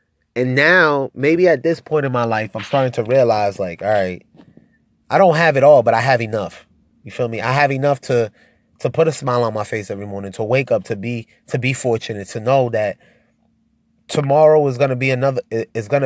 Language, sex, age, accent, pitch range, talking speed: English, male, 20-39, American, 115-140 Hz, 225 wpm